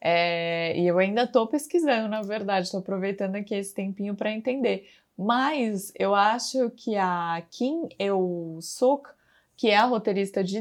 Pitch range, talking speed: 190-240 Hz, 160 wpm